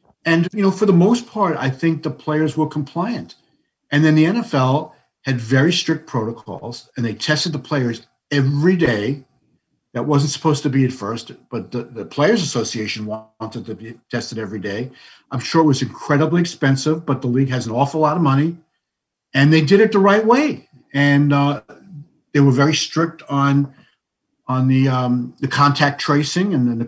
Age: 50-69